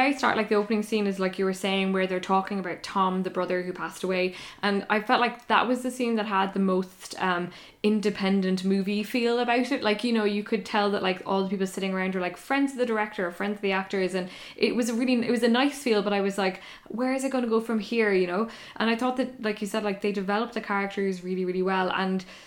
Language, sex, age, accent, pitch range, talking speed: English, female, 10-29, Irish, 190-220 Hz, 275 wpm